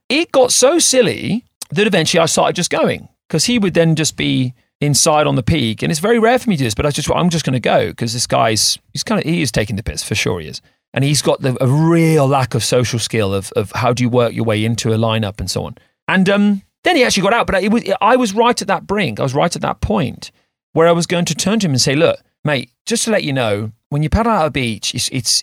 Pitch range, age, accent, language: 125-180 Hz, 40-59, British, English